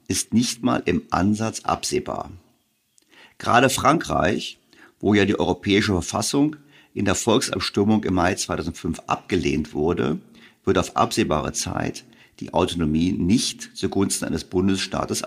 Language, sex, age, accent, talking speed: German, male, 50-69, German, 120 wpm